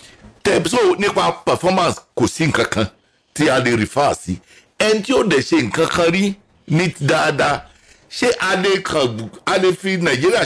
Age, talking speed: 60-79, 120 wpm